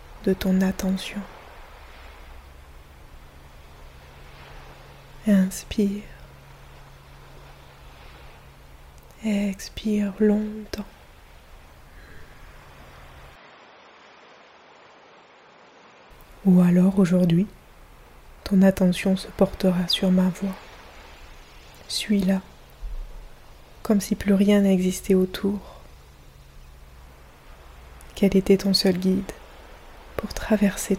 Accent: French